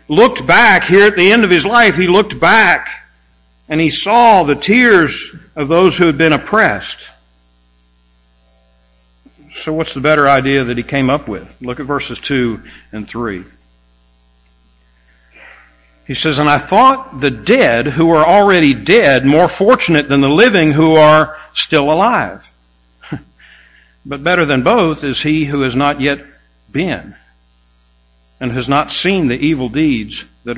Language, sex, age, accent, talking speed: English, male, 60-79, American, 155 wpm